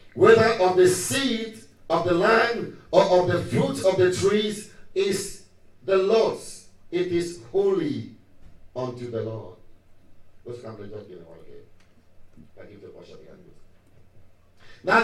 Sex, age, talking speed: male, 50-69, 95 wpm